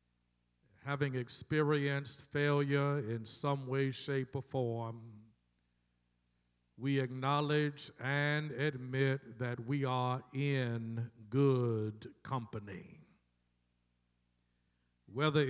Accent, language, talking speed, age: American, English, 75 wpm, 50-69